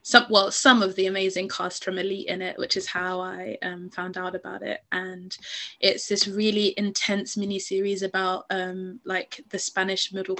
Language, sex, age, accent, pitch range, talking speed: English, female, 20-39, British, 190-225 Hz, 190 wpm